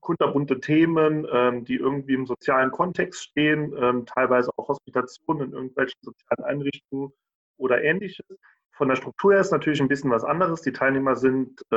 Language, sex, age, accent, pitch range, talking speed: German, male, 30-49, German, 125-145 Hz, 160 wpm